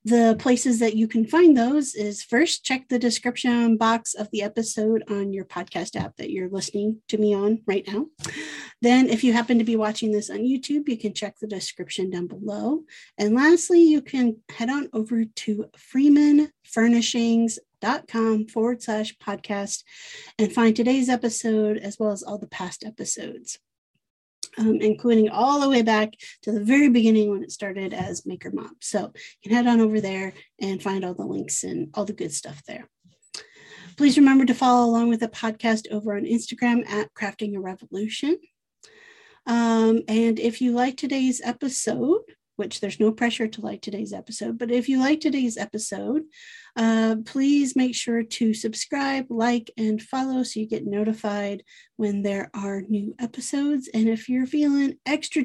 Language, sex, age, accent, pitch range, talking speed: English, female, 30-49, American, 215-260 Hz, 175 wpm